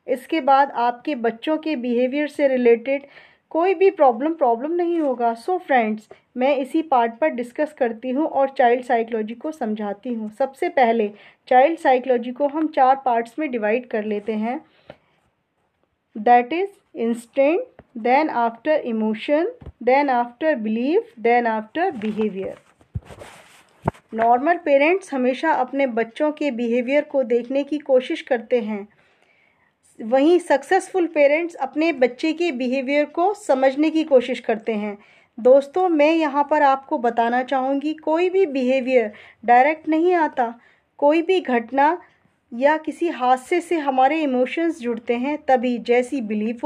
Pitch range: 240-310 Hz